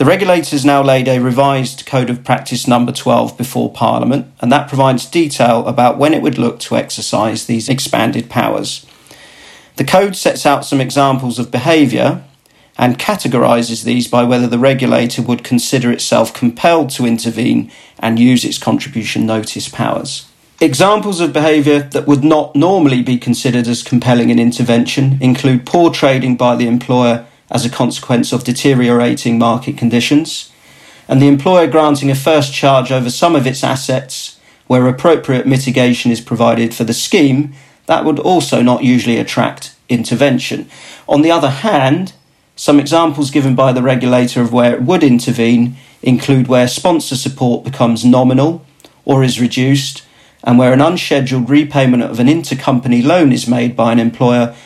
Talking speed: 160 wpm